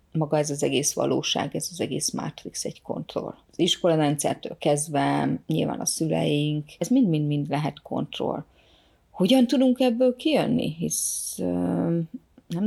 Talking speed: 135 wpm